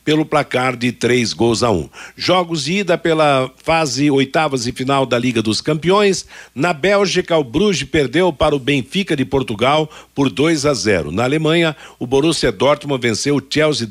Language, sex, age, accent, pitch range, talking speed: Portuguese, male, 60-79, Brazilian, 130-170 Hz, 175 wpm